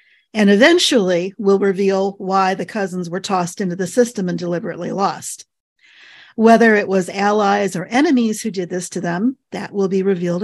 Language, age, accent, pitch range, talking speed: English, 40-59, American, 185-225 Hz, 170 wpm